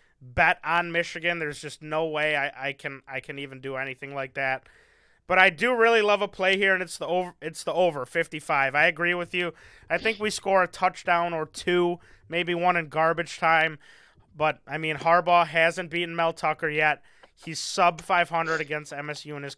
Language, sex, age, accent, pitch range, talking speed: English, male, 20-39, American, 140-175 Hz, 200 wpm